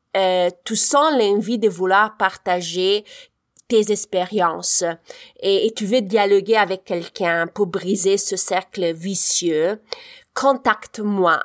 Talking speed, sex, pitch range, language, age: 115 wpm, female, 180-220 Hz, French, 30-49